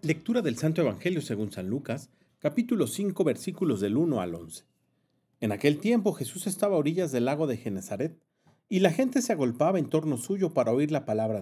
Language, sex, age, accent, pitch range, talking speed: Spanish, male, 40-59, Mexican, 115-180 Hz, 195 wpm